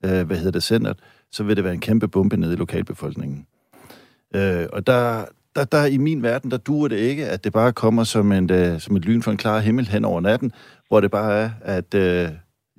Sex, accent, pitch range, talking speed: male, native, 95-125 Hz, 235 wpm